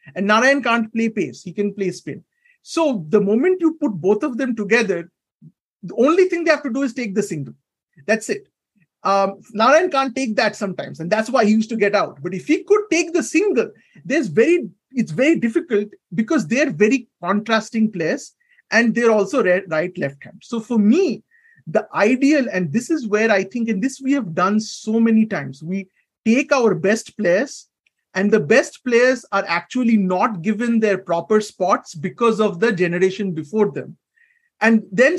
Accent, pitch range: Indian, 205-280 Hz